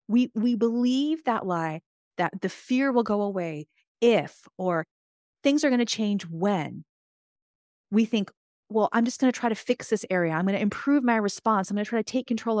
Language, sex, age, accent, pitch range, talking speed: English, female, 40-59, American, 185-250 Hz, 210 wpm